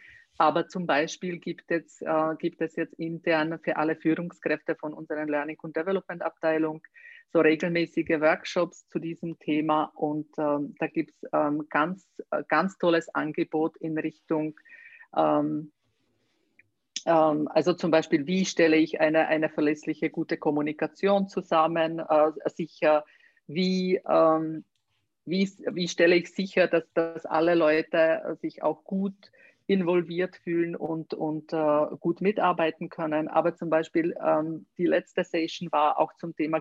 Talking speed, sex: 145 wpm, female